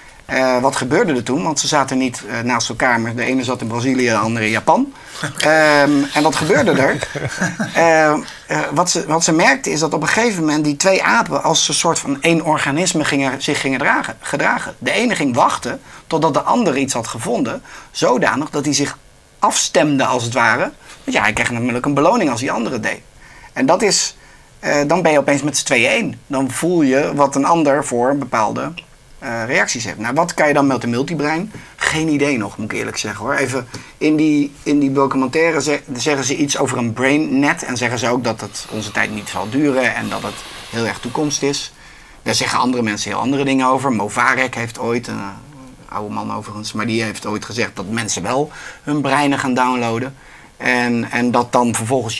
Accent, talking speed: Dutch, 215 wpm